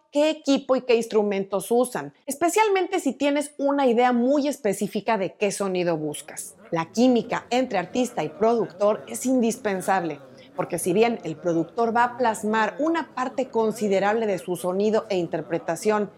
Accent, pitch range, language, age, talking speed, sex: Mexican, 185-255 Hz, Spanish, 30-49, 150 wpm, female